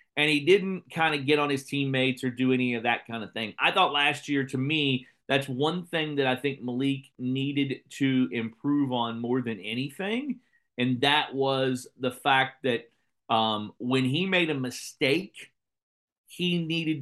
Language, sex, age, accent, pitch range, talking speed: English, male, 40-59, American, 125-150 Hz, 180 wpm